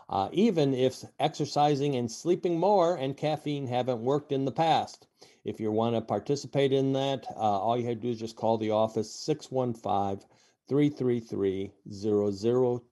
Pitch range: 110-140 Hz